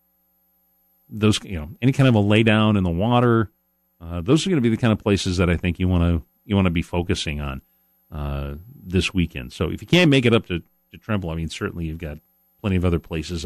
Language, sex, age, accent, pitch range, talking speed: English, male, 40-59, American, 75-110 Hz, 250 wpm